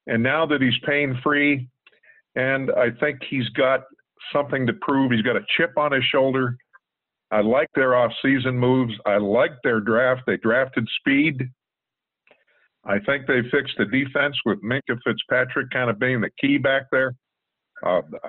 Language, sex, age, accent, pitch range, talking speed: English, male, 50-69, American, 120-140 Hz, 160 wpm